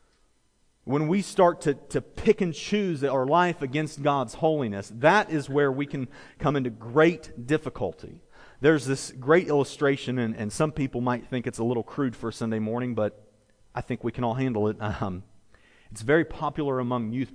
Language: English